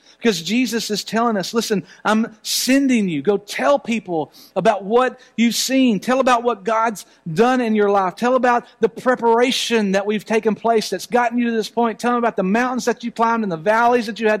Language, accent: English, American